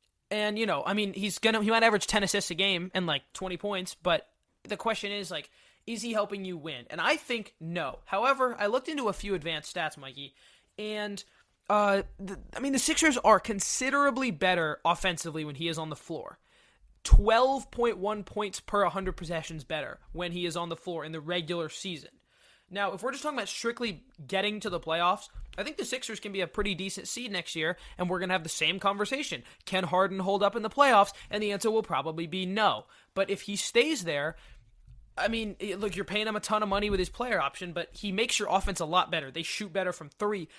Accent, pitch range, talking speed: American, 170-210 Hz, 225 wpm